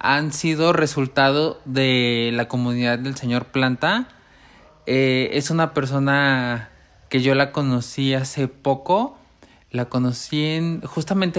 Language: Spanish